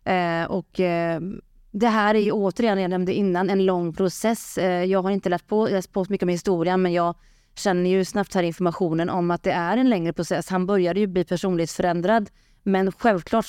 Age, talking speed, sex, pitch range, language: 30-49, 185 wpm, female, 180-220 Hz, Swedish